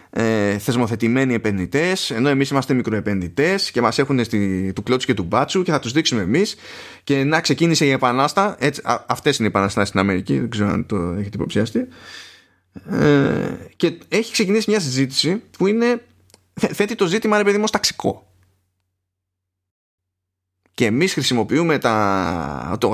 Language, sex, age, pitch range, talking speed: Greek, male, 20-39, 100-145 Hz, 150 wpm